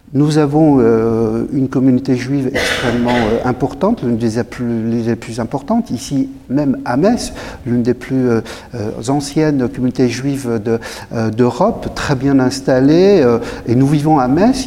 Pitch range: 125-155 Hz